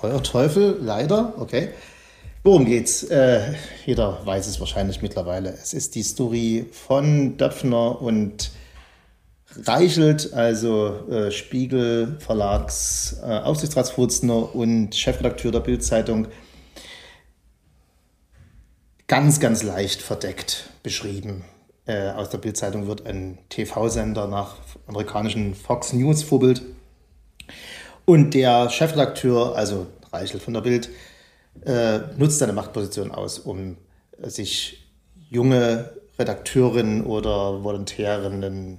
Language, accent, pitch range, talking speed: German, German, 100-125 Hz, 100 wpm